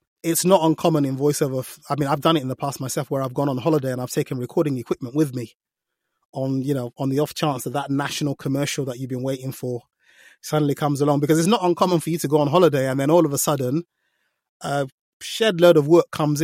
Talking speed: 245 wpm